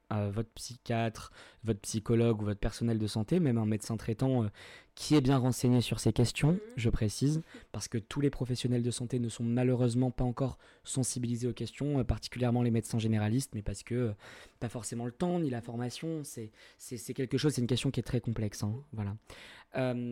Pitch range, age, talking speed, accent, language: 115-135 Hz, 20-39, 210 wpm, French, French